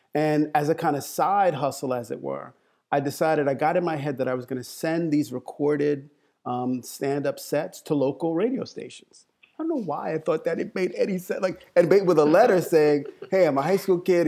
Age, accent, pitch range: 30-49, American, 140-170 Hz